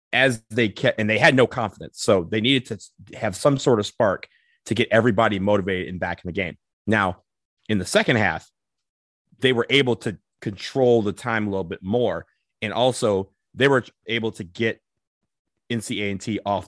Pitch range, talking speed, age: 95-120 Hz, 190 wpm, 30-49